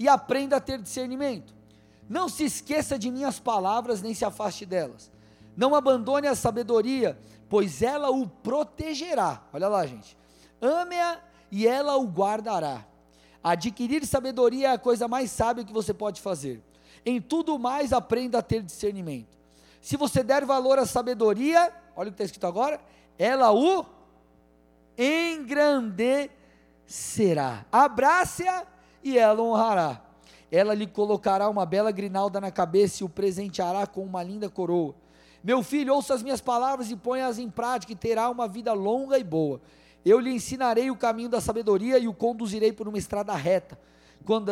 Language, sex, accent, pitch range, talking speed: Portuguese, male, Brazilian, 185-260 Hz, 155 wpm